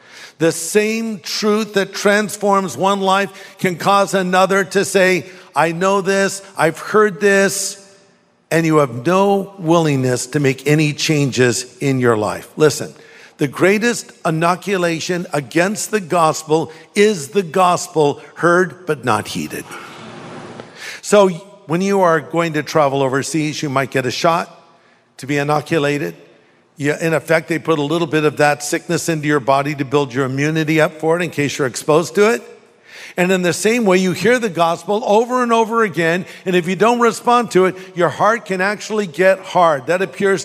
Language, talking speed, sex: English, 170 wpm, male